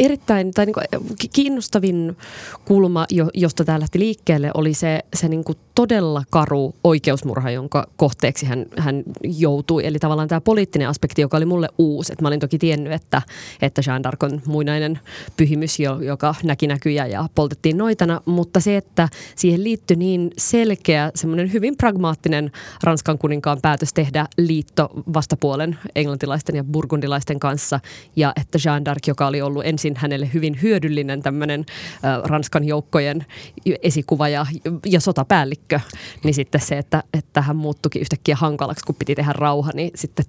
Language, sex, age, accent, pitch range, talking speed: Finnish, female, 20-39, native, 145-170 Hz, 150 wpm